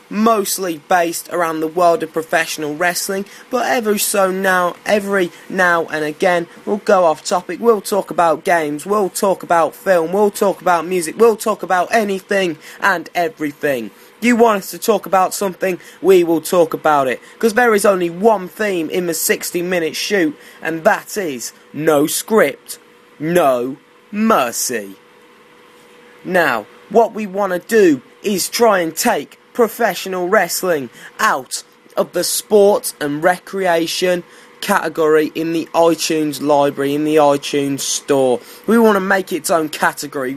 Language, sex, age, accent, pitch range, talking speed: English, male, 20-39, British, 160-205 Hz, 150 wpm